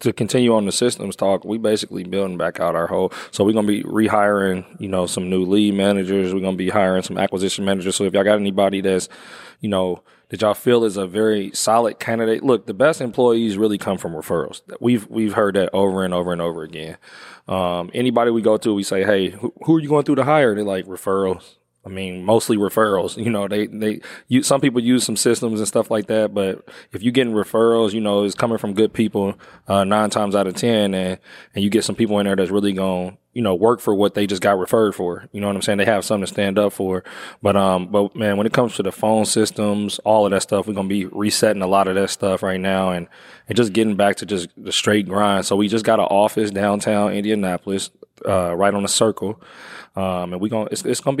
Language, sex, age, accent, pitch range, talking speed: English, male, 20-39, American, 95-110 Hz, 245 wpm